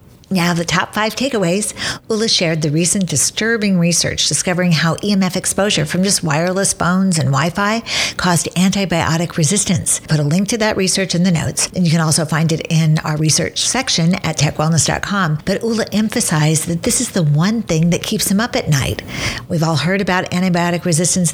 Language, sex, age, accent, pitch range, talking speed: English, female, 50-69, American, 165-200 Hz, 190 wpm